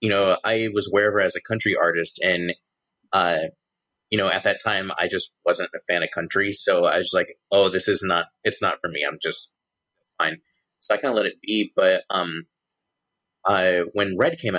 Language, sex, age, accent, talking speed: English, male, 30-49, American, 220 wpm